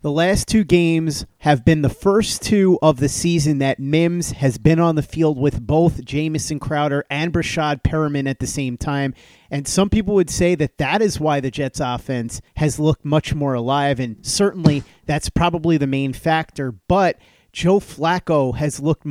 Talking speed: 185 wpm